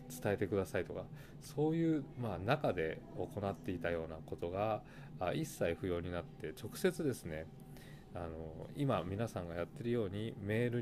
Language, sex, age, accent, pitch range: Japanese, male, 20-39, native, 90-135 Hz